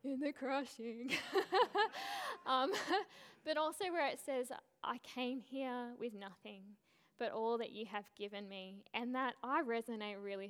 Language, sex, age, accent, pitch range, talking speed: English, female, 10-29, Australian, 200-265 Hz, 150 wpm